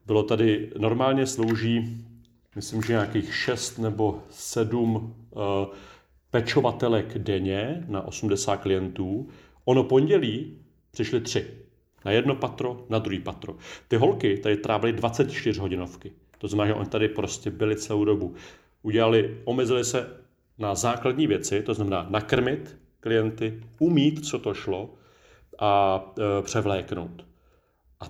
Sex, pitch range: male, 100-115 Hz